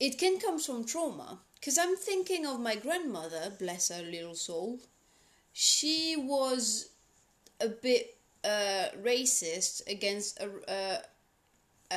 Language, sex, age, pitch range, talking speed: English, female, 30-49, 195-275 Hz, 115 wpm